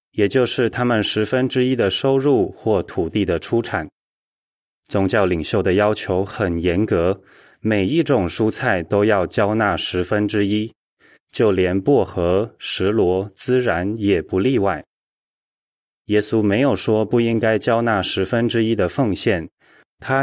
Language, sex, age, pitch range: Chinese, male, 20-39, 95-120 Hz